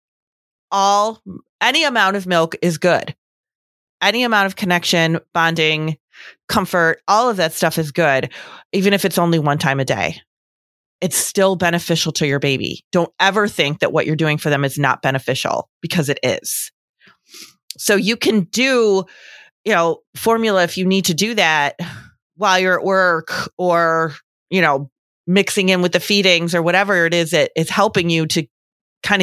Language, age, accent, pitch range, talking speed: English, 30-49, American, 155-195 Hz, 170 wpm